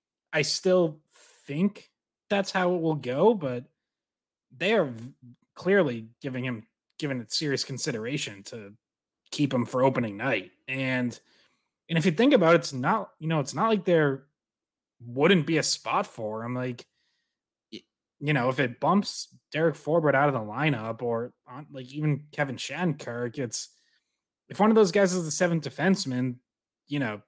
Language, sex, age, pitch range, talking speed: English, male, 20-39, 125-155 Hz, 160 wpm